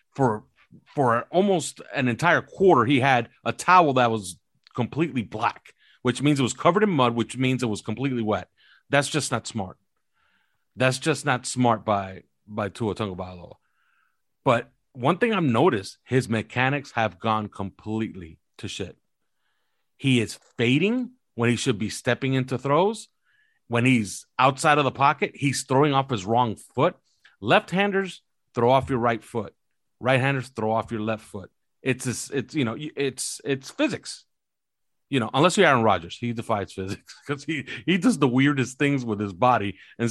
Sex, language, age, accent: male, English, 40-59, American